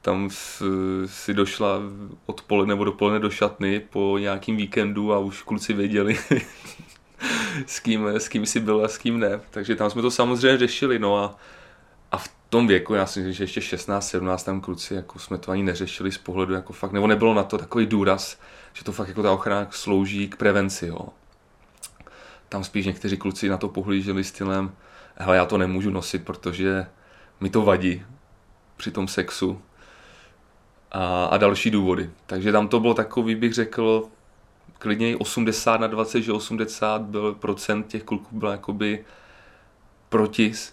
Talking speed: 165 wpm